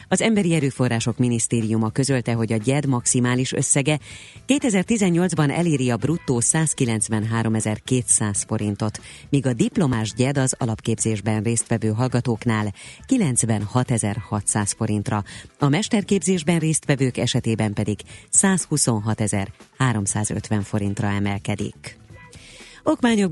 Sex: female